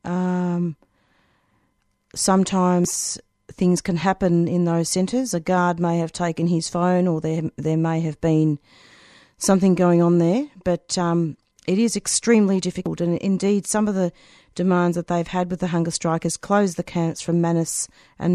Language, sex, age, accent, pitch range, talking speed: English, female, 40-59, Australian, 160-185 Hz, 165 wpm